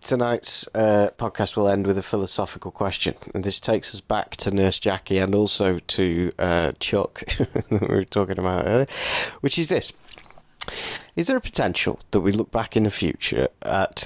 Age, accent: 30-49, British